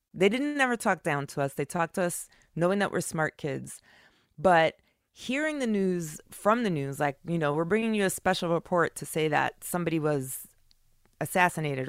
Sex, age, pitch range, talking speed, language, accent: female, 30-49, 145-185 Hz, 190 wpm, English, American